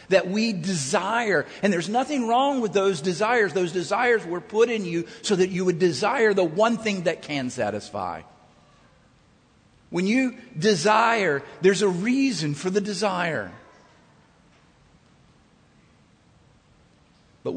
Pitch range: 130-190 Hz